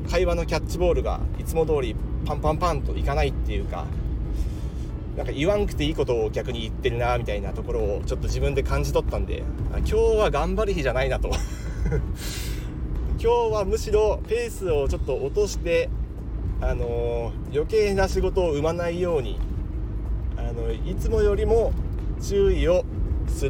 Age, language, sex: 30-49, Japanese, male